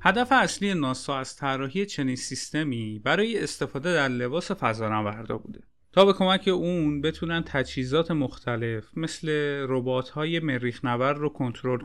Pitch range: 130-175 Hz